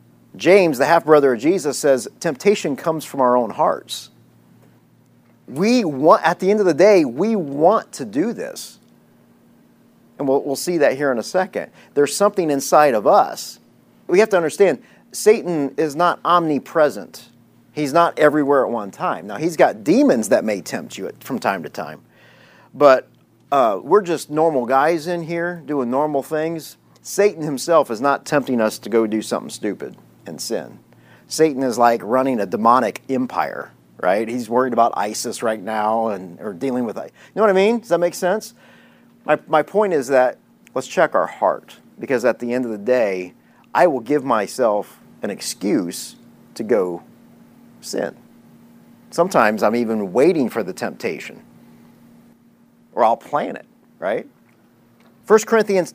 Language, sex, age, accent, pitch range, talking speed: English, male, 40-59, American, 125-185 Hz, 165 wpm